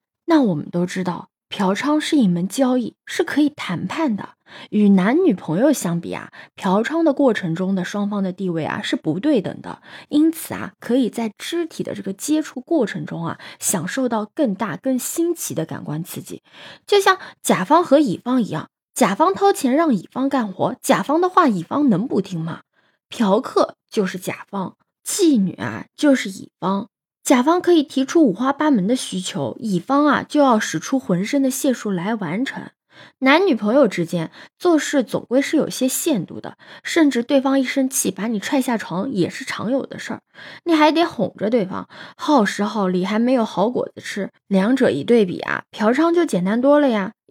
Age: 20-39